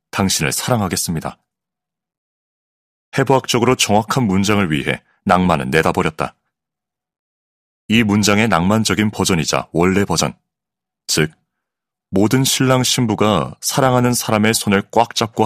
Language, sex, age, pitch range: Korean, male, 30-49, 85-115 Hz